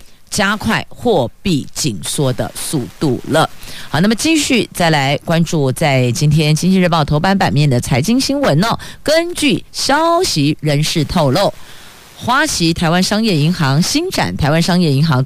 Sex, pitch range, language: female, 145-205 Hz, Chinese